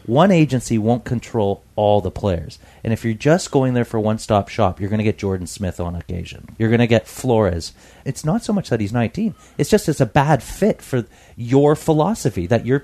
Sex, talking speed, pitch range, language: male, 220 wpm, 100-130 Hz, English